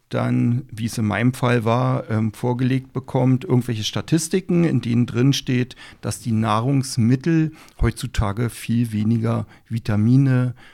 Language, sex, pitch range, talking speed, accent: German, male, 115-135 Hz, 130 wpm, German